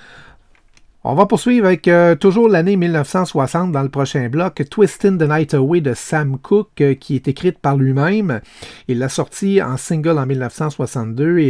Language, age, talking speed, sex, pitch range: French, 30-49, 170 wpm, male, 130-170 Hz